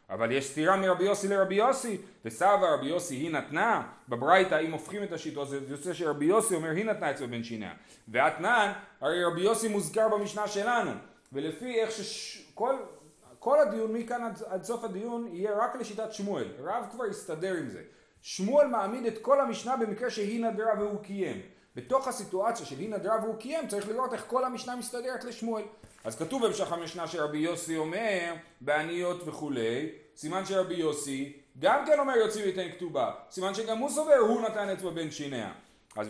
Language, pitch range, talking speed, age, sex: Hebrew, 160-225 Hz, 175 wpm, 30-49, male